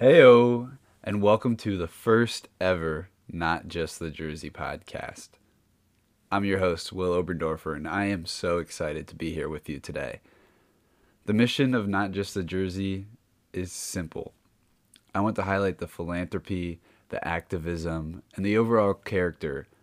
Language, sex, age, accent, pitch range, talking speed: English, male, 20-39, American, 85-105 Hz, 150 wpm